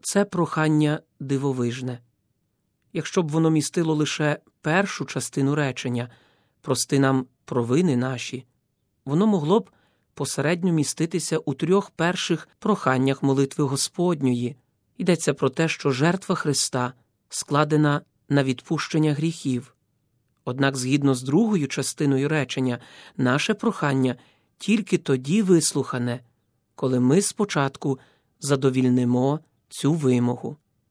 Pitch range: 130-160 Hz